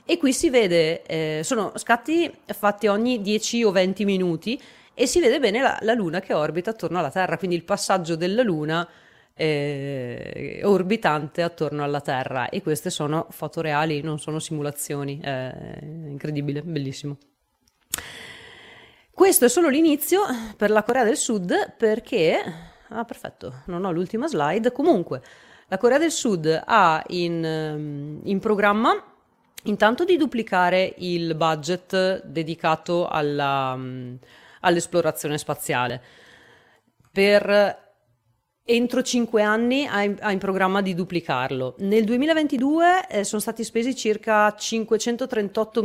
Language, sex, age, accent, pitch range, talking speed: Italian, female, 30-49, native, 160-220 Hz, 125 wpm